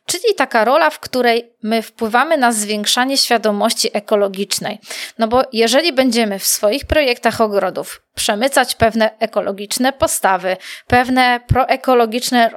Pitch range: 215-255 Hz